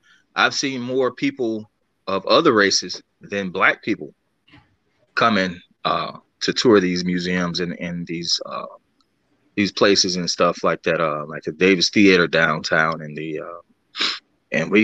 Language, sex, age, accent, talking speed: English, male, 20-39, American, 155 wpm